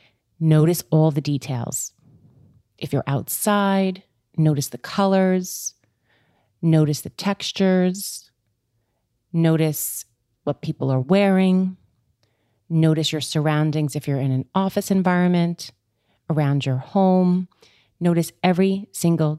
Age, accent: 30-49, American